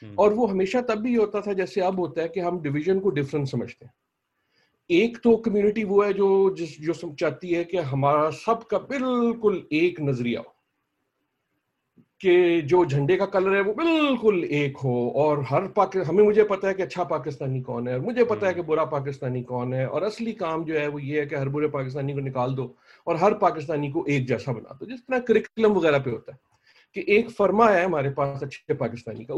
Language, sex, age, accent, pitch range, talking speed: English, male, 40-59, Indian, 140-195 Hz, 170 wpm